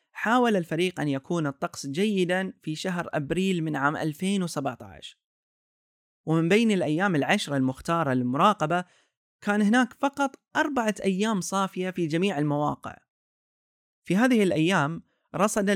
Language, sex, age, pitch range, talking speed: Arabic, male, 30-49, 150-205 Hz, 120 wpm